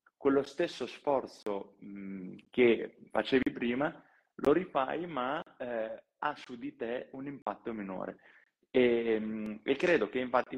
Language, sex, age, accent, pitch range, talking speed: Italian, male, 20-39, native, 105-135 Hz, 135 wpm